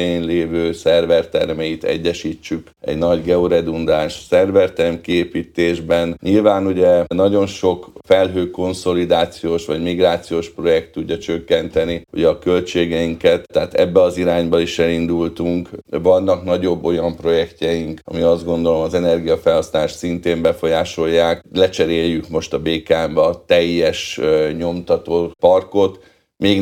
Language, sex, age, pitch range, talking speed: Hungarian, male, 50-69, 85-95 Hz, 115 wpm